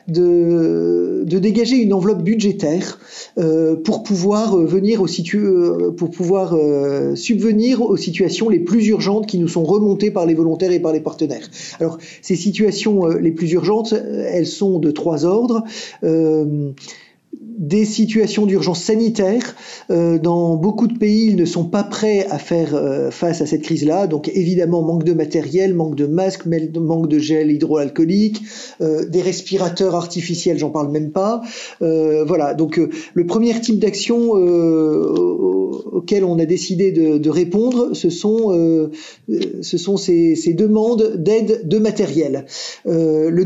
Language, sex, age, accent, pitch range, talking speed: French, male, 50-69, French, 165-210 Hz, 150 wpm